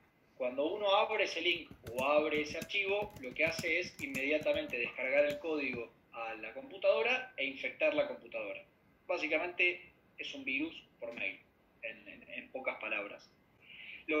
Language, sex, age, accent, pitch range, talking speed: Spanish, male, 20-39, Argentinian, 160-255 Hz, 150 wpm